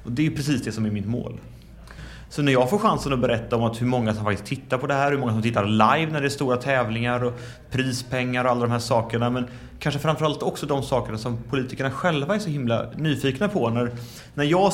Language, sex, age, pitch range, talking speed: English, male, 30-49, 115-140 Hz, 250 wpm